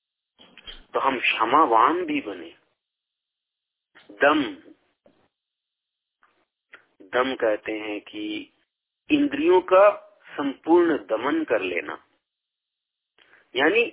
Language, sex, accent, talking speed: Hindi, male, native, 75 wpm